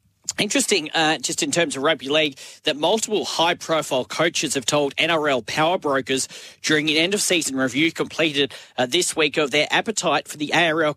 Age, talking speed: 40-59, 170 wpm